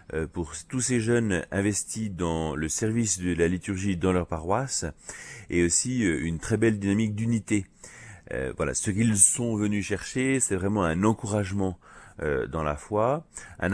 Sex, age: male, 40-59